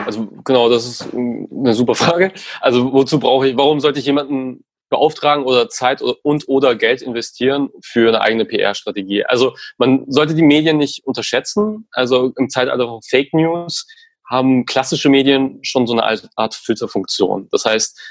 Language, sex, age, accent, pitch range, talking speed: German, male, 30-49, German, 115-150 Hz, 160 wpm